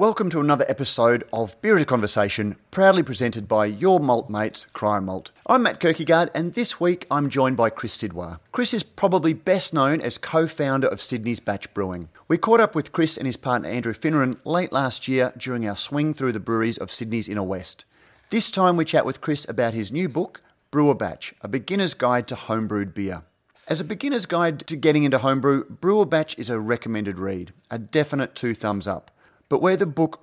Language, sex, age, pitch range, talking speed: English, male, 30-49, 105-155 Hz, 205 wpm